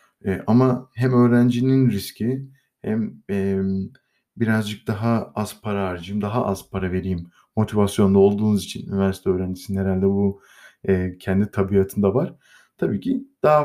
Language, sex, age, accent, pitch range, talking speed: Turkish, male, 50-69, native, 100-130 Hz, 130 wpm